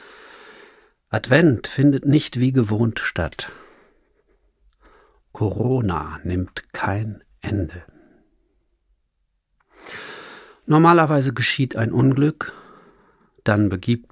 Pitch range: 100-155 Hz